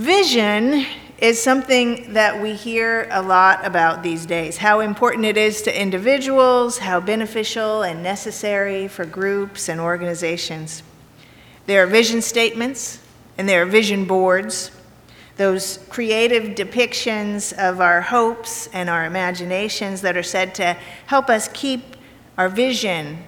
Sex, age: female, 40-59